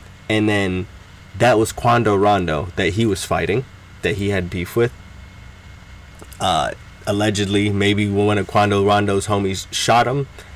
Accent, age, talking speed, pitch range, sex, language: American, 20-39, 140 wpm, 95-115 Hz, male, English